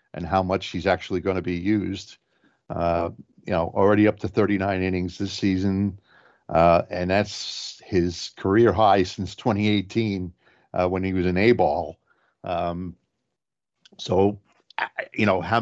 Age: 50-69